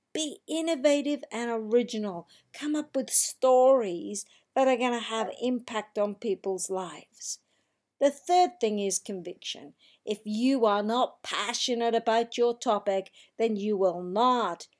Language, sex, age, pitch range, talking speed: English, female, 50-69, 205-255 Hz, 140 wpm